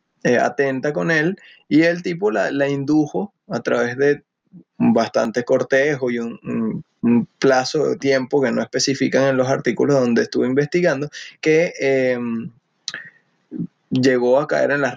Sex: male